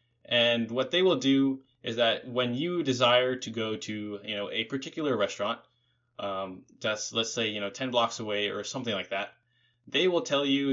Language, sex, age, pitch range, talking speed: English, male, 10-29, 115-130 Hz, 195 wpm